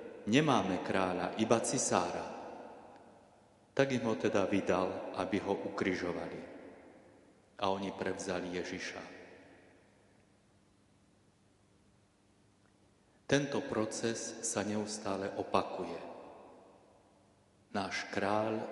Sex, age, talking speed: male, 30-49, 75 wpm